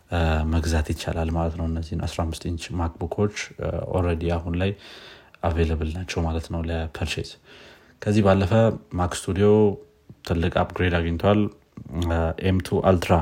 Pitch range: 85-95 Hz